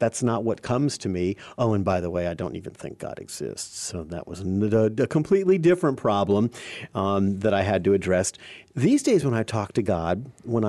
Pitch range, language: 115-175 Hz, English